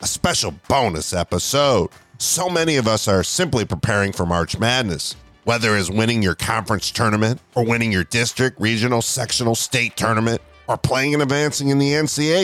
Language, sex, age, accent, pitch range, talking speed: English, male, 40-59, American, 95-130 Hz, 170 wpm